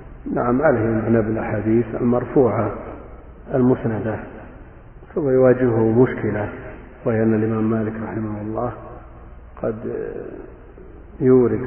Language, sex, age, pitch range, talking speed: Arabic, male, 50-69, 110-120 Hz, 85 wpm